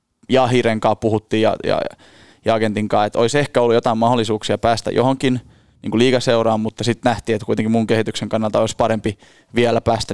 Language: Finnish